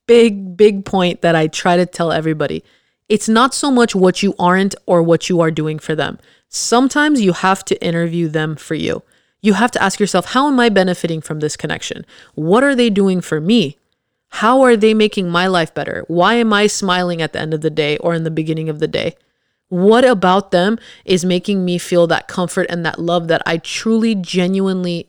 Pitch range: 165-210 Hz